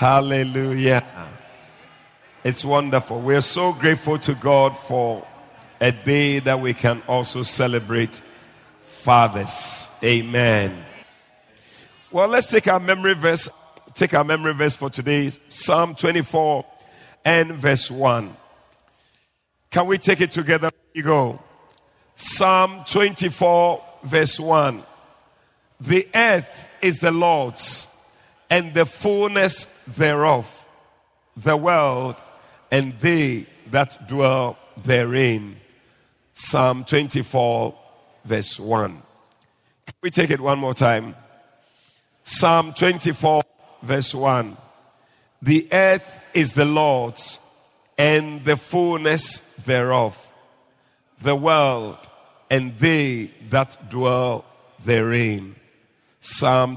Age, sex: 50-69, male